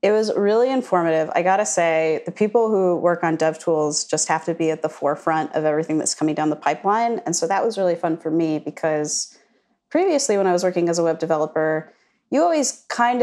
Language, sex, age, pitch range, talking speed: English, female, 30-49, 160-215 Hz, 220 wpm